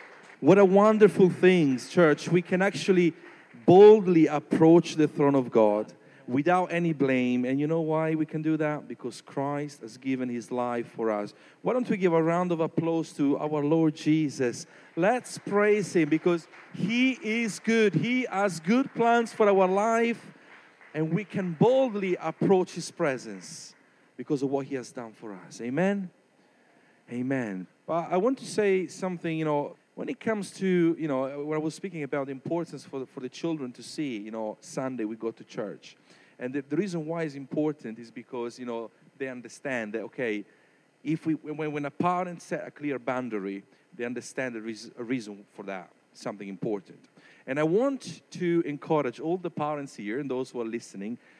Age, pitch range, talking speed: 40-59, 130-180 Hz, 185 wpm